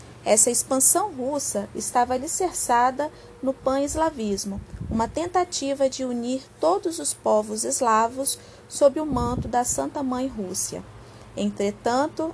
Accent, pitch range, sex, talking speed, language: Brazilian, 225-280 Hz, female, 110 wpm, Portuguese